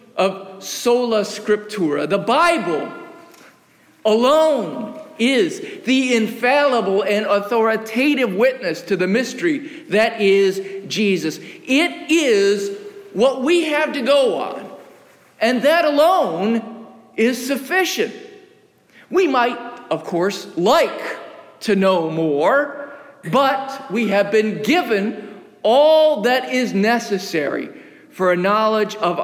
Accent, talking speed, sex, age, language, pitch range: American, 105 wpm, male, 50-69, English, 195-285 Hz